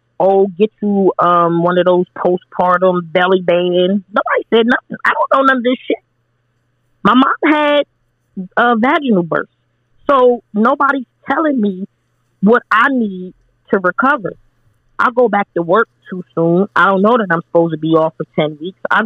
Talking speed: 175 wpm